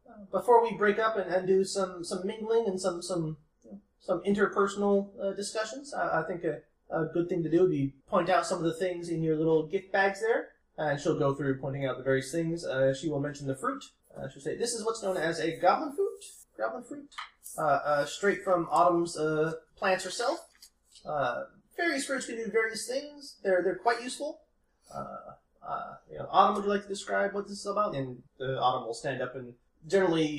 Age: 20-39